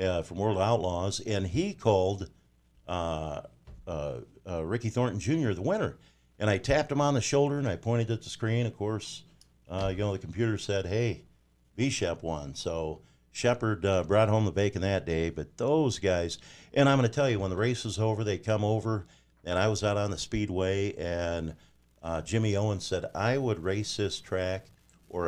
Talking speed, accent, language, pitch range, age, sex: 195 wpm, American, English, 85-110 Hz, 50-69, male